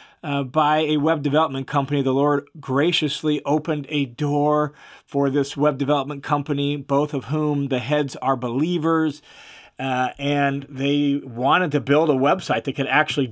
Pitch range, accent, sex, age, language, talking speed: 135-155 Hz, American, male, 40-59, English, 160 wpm